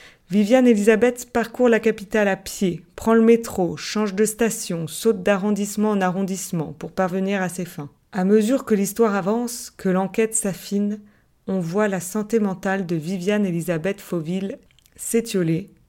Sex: female